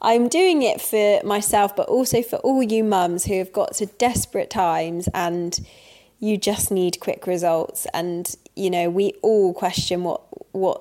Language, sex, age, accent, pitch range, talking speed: English, female, 20-39, British, 175-210 Hz, 170 wpm